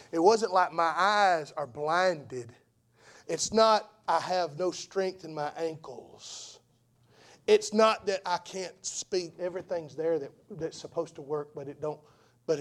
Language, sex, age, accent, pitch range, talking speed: English, male, 40-59, American, 130-180 Hz, 150 wpm